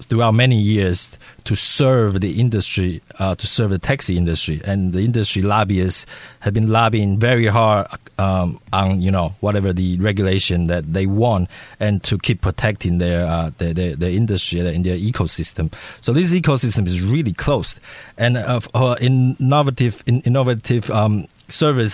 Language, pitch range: English, 95-115 Hz